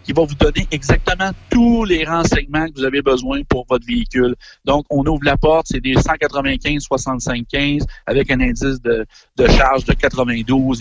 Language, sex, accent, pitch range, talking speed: French, male, Canadian, 125-150 Hz, 170 wpm